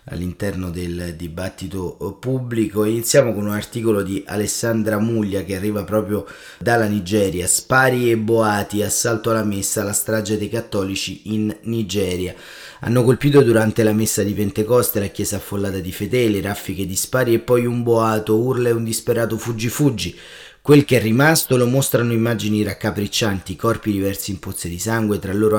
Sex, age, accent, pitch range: male, 30-49, native, 100-120 Hz